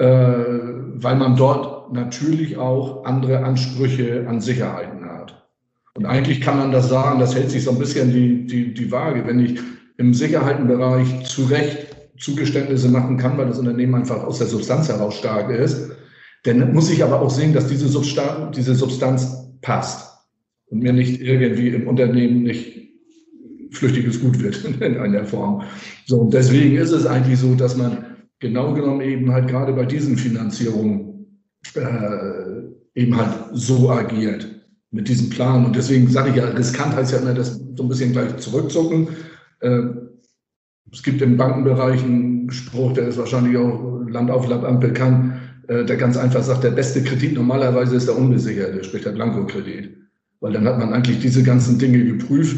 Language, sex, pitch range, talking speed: German, male, 120-135 Hz, 170 wpm